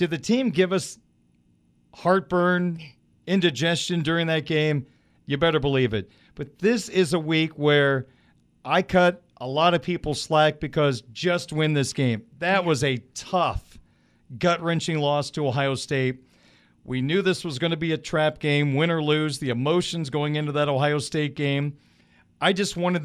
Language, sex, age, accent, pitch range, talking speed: English, male, 40-59, American, 140-170 Hz, 170 wpm